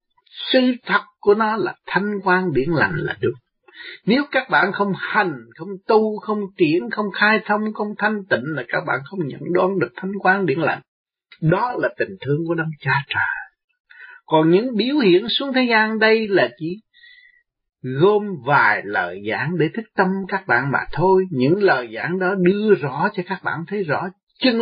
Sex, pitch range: male, 140-215 Hz